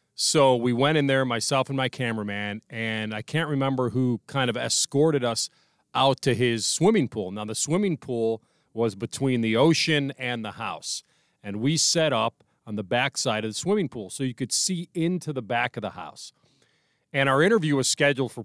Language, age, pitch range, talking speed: English, 40-59, 115-150 Hz, 200 wpm